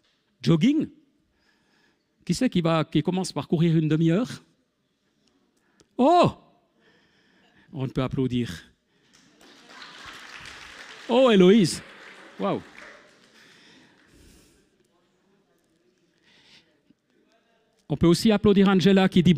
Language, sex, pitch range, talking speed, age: French, male, 135-190 Hz, 80 wpm, 50-69